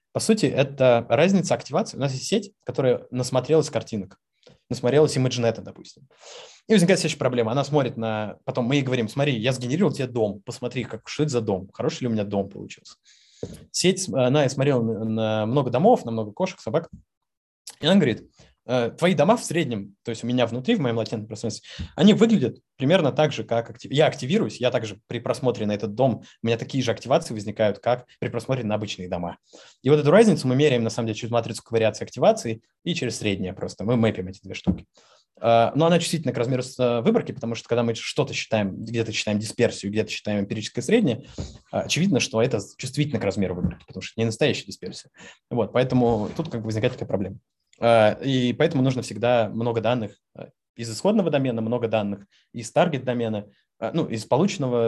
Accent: native